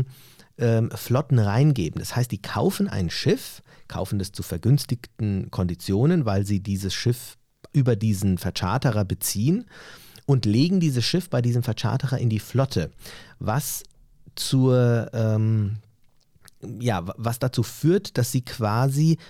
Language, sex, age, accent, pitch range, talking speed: German, male, 40-59, German, 110-145 Hz, 120 wpm